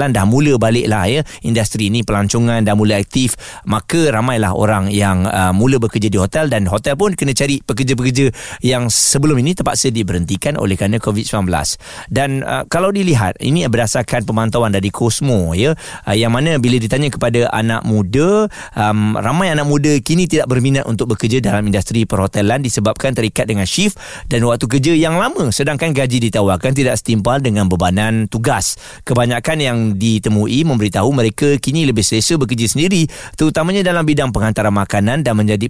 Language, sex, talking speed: Malay, male, 165 wpm